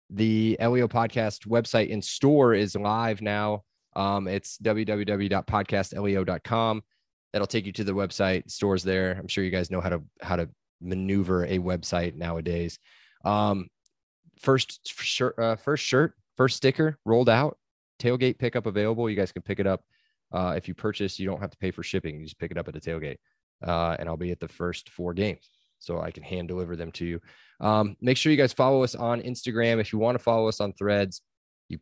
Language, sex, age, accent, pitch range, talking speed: English, male, 20-39, American, 90-115 Hz, 200 wpm